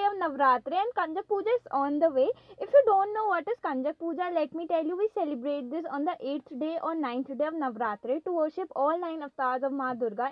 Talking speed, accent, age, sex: 225 wpm, Indian, 20-39, female